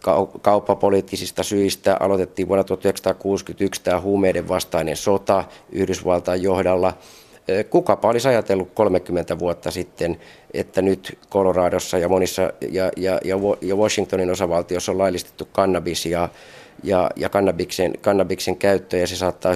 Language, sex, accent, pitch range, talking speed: Finnish, male, native, 85-95 Hz, 115 wpm